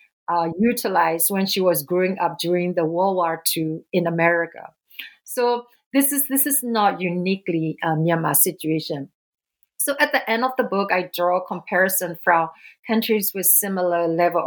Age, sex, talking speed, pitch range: 50-69, female, 165 wpm, 170-210 Hz